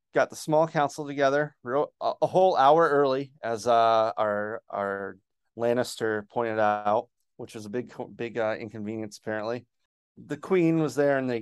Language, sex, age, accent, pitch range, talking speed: English, male, 30-49, American, 115-140 Hz, 165 wpm